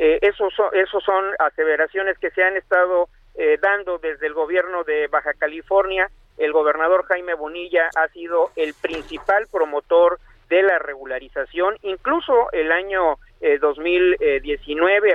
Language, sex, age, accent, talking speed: Spanish, male, 50-69, Mexican, 135 wpm